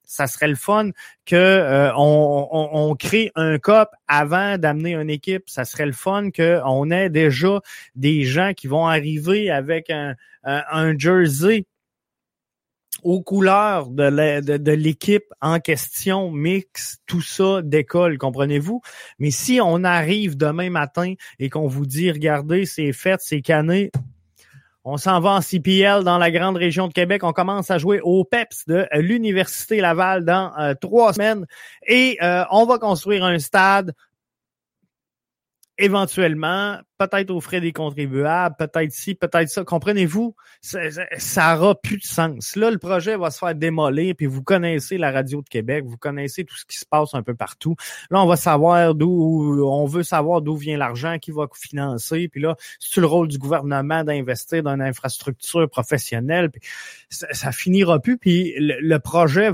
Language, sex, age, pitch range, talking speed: French, male, 20-39, 145-190 Hz, 170 wpm